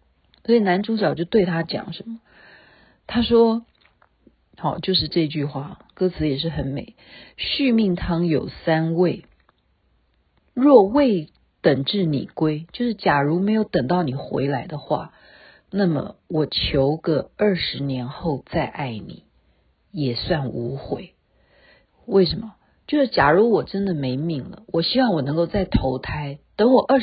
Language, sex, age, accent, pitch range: Chinese, female, 50-69, native, 140-220 Hz